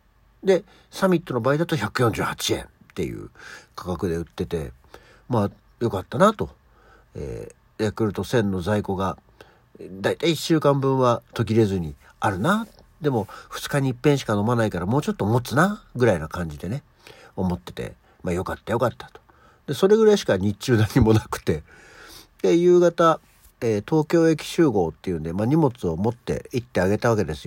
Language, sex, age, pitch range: Japanese, male, 60-79, 95-145 Hz